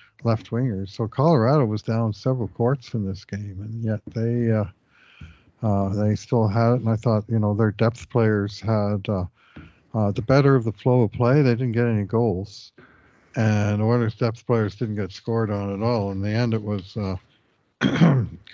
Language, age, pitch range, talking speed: English, 60-79, 100-115 Hz, 190 wpm